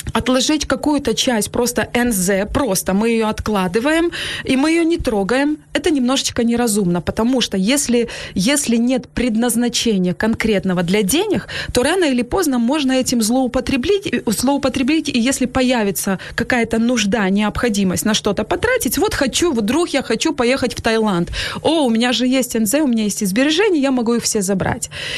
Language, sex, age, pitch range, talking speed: Ukrainian, female, 20-39, 210-265 Hz, 155 wpm